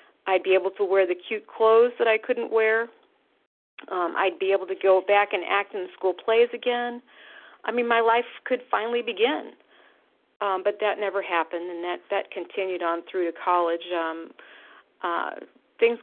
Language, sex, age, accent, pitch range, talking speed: English, female, 40-59, American, 180-225 Hz, 180 wpm